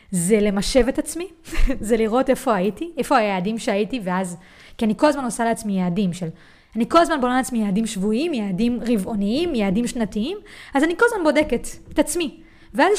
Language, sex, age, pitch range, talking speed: English, female, 20-39, 195-275 Hz, 135 wpm